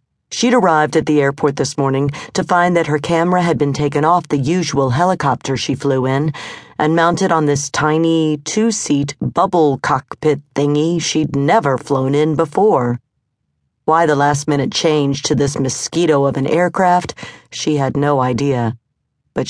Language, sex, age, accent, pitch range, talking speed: English, female, 50-69, American, 140-175 Hz, 155 wpm